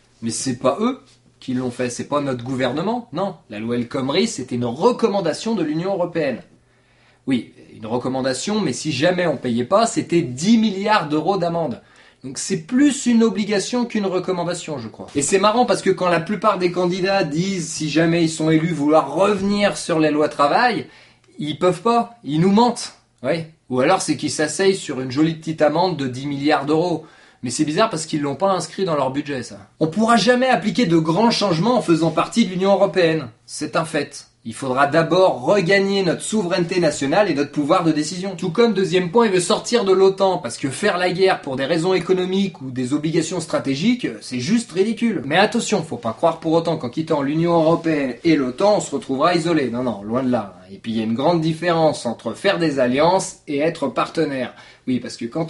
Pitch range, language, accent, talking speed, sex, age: 140-195 Hz, French, French, 210 wpm, male, 20-39